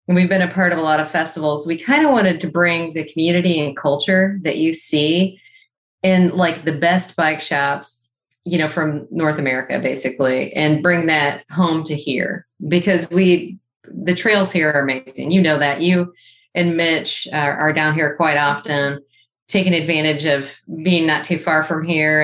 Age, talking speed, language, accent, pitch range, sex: 30-49, 185 wpm, English, American, 150-175 Hz, female